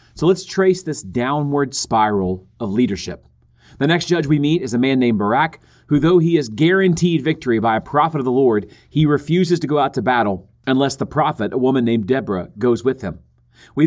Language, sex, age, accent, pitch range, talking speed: English, male, 40-59, American, 115-155 Hz, 210 wpm